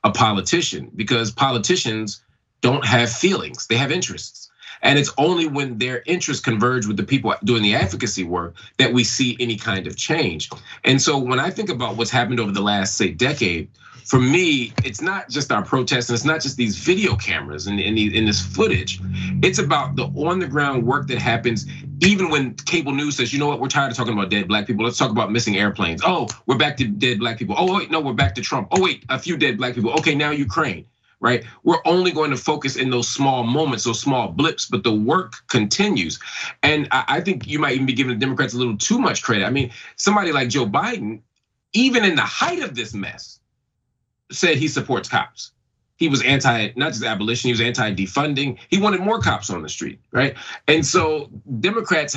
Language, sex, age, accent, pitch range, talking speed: English, male, 30-49, American, 110-145 Hz, 215 wpm